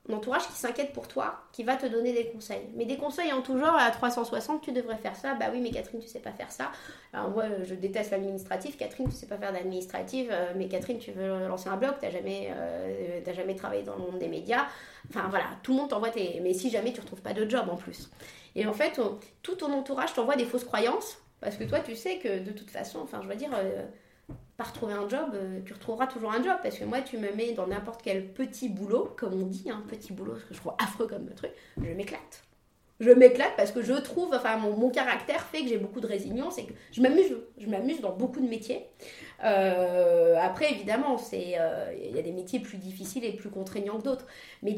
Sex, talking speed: female, 250 wpm